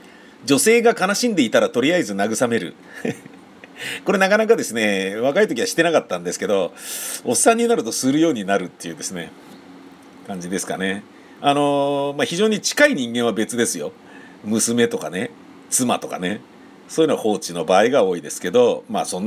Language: Japanese